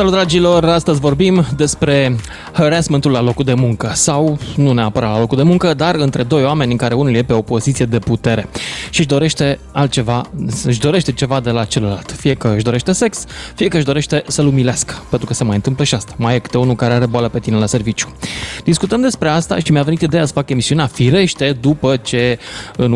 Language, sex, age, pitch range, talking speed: Romanian, male, 20-39, 120-160 Hz, 220 wpm